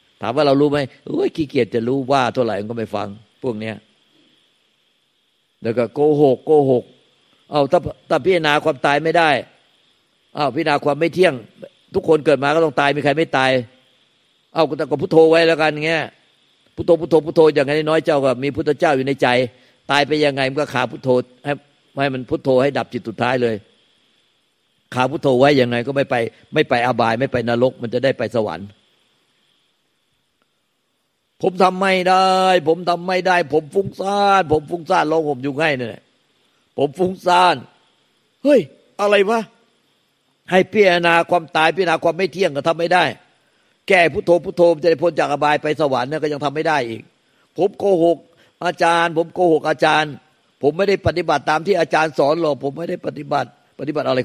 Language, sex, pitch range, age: Thai, male, 130-170 Hz, 50-69